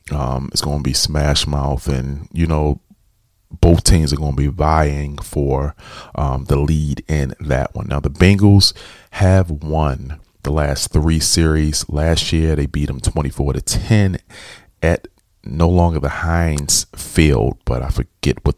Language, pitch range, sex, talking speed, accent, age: English, 70-85 Hz, male, 165 wpm, American, 40-59